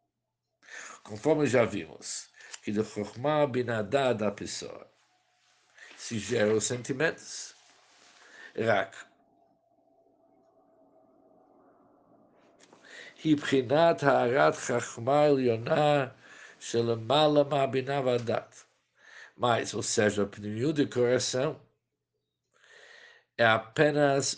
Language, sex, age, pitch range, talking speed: Portuguese, male, 60-79, 110-145 Hz, 60 wpm